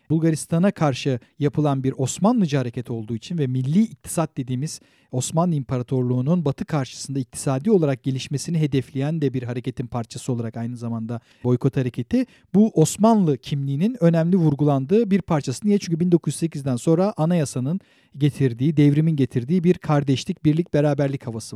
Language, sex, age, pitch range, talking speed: English, male, 40-59, 140-195 Hz, 135 wpm